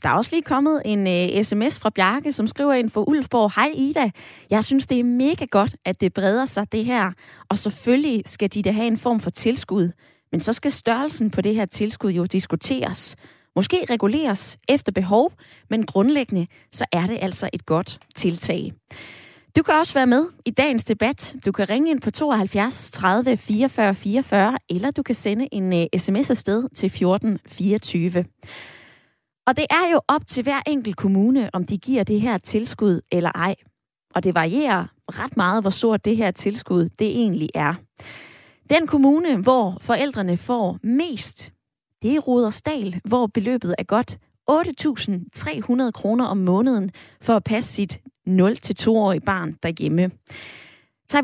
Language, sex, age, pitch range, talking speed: Danish, female, 20-39, 190-260 Hz, 170 wpm